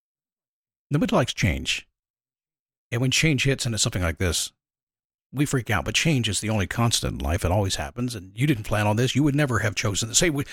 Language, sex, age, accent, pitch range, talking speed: English, male, 50-69, American, 115-175 Hz, 220 wpm